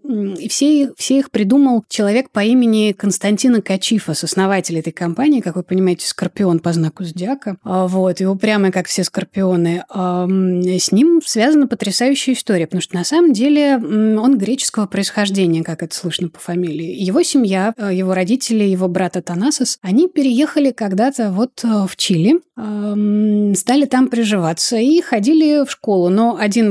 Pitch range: 185-240 Hz